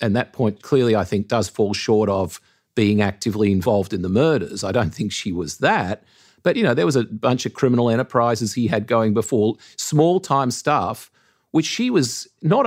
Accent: Australian